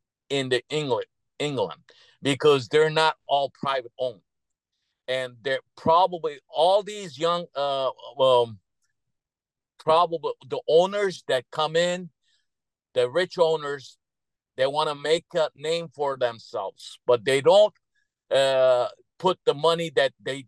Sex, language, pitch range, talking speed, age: male, English, 125-165 Hz, 130 wpm, 50-69